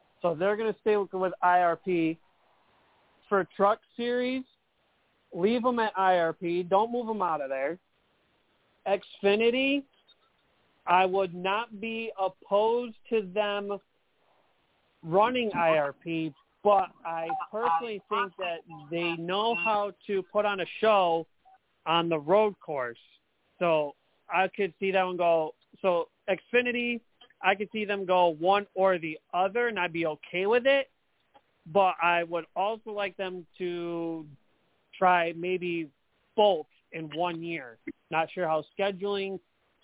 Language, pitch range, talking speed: English, 170-205 Hz, 135 wpm